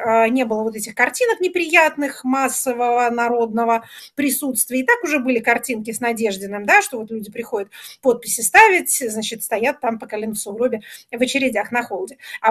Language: Russian